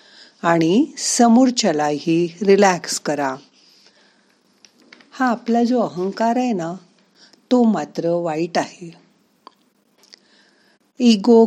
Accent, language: native, Marathi